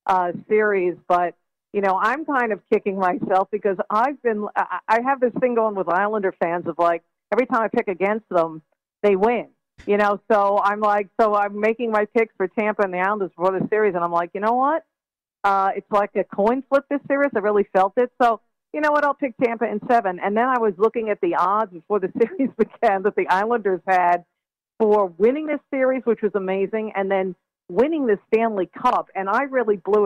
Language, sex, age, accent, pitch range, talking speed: English, female, 50-69, American, 190-230 Hz, 220 wpm